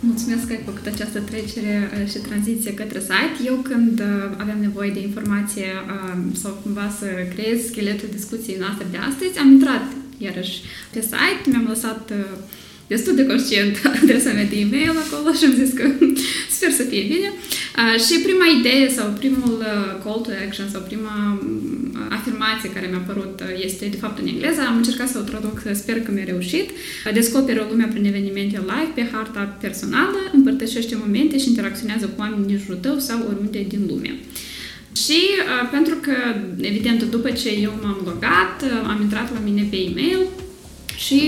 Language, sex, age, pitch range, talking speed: Romanian, female, 10-29, 210-270 Hz, 165 wpm